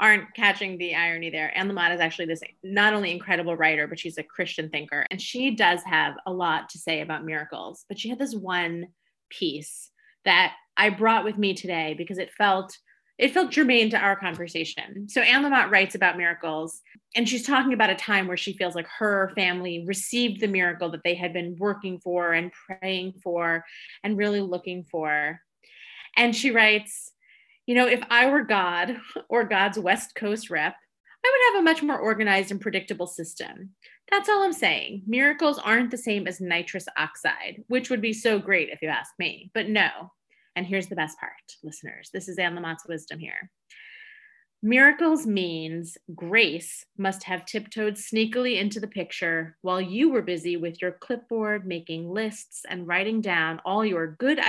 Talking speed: 185 wpm